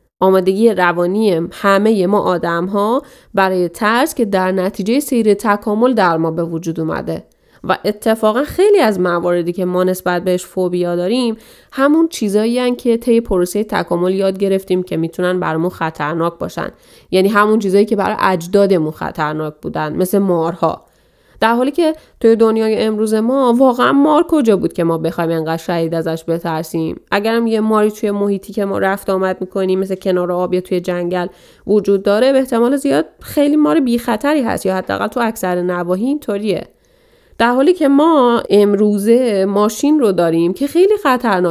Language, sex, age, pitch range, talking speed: Persian, female, 30-49, 180-235 Hz, 165 wpm